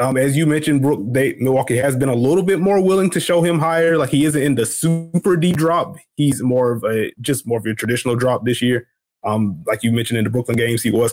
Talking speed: 265 wpm